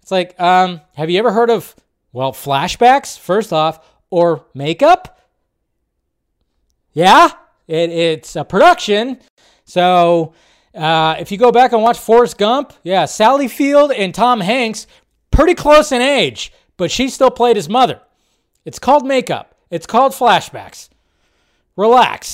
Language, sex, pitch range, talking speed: English, male, 180-295 Hz, 135 wpm